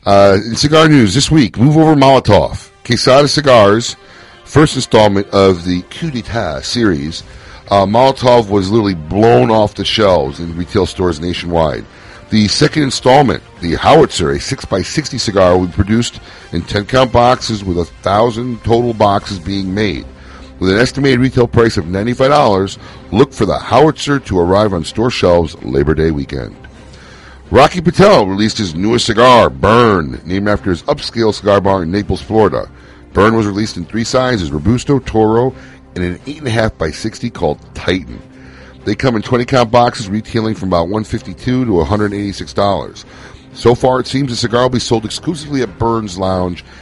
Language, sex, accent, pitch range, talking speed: English, male, American, 90-125 Hz, 160 wpm